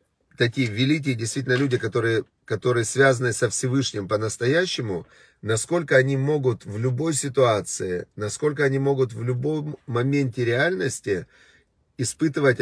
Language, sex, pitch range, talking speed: Russian, male, 120-150 Hz, 115 wpm